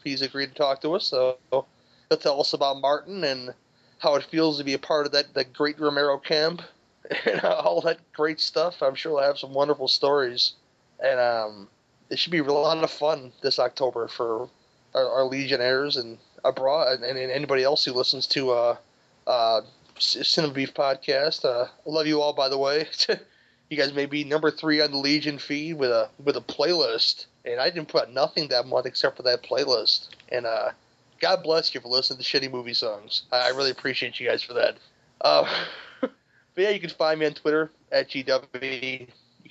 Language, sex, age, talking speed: English, male, 30-49, 200 wpm